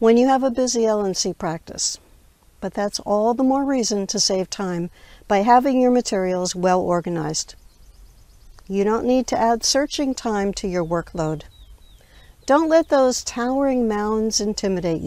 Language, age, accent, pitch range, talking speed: English, 60-79, American, 180-250 Hz, 145 wpm